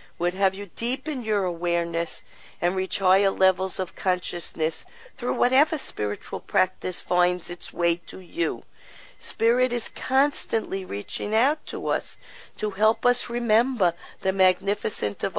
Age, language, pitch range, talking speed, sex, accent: 50-69, English, 175-200 Hz, 135 wpm, female, American